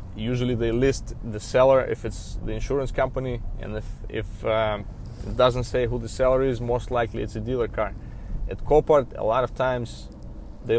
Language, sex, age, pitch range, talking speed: English, male, 20-39, 110-125 Hz, 190 wpm